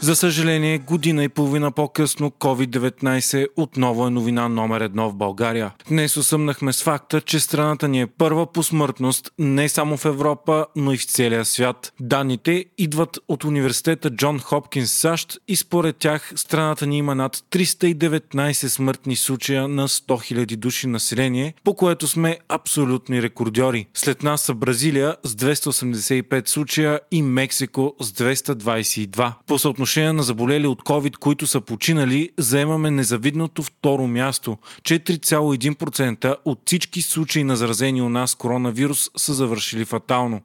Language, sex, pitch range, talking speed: Bulgarian, male, 125-155 Hz, 140 wpm